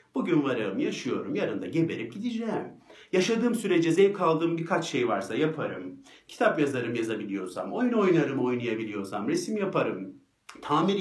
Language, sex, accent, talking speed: Turkish, male, native, 130 wpm